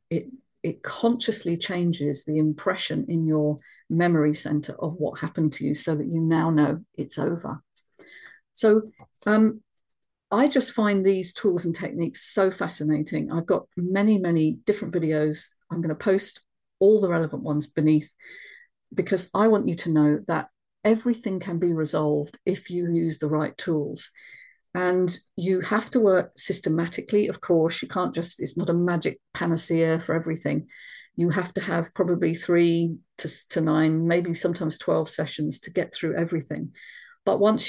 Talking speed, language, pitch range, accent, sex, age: 160 wpm, English, 155-190 Hz, British, female, 50-69